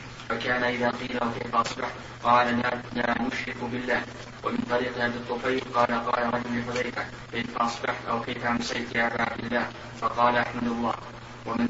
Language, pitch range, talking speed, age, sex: Arabic, 120-125 Hz, 155 wpm, 20-39, male